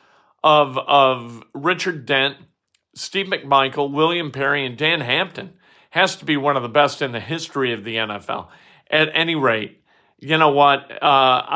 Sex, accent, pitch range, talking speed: male, American, 125-155 Hz, 160 wpm